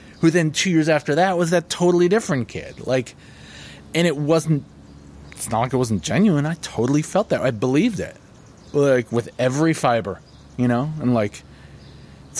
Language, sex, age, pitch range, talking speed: English, male, 30-49, 105-145 Hz, 180 wpm